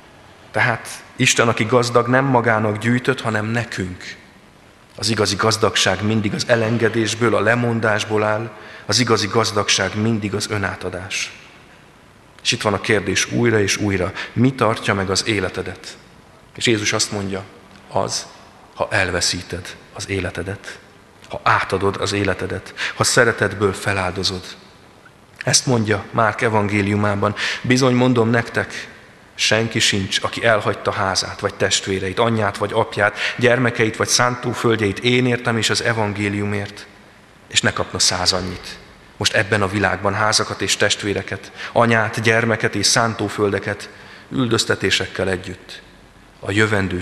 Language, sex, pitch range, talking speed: Hungarian, male, 95-115 Hz, 125 wpm